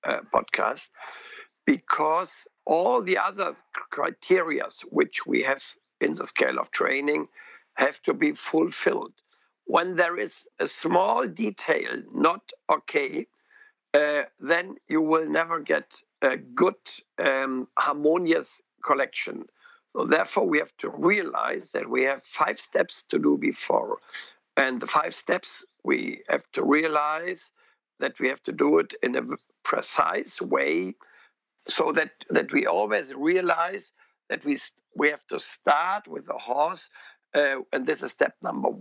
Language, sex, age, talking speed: English, male, 50-69, 140 wpm